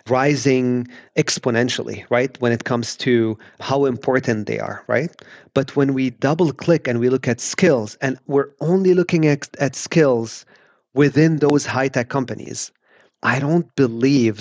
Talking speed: 155 wpm